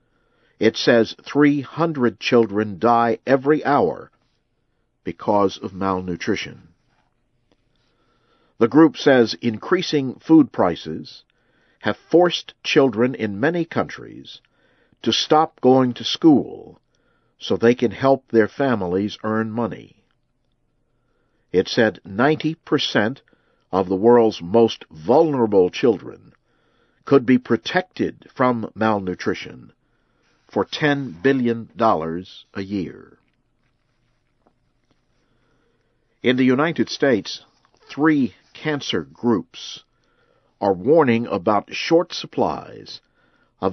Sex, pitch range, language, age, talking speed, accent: male, 110-145 Hz, English, 50-69, 90 wpm, American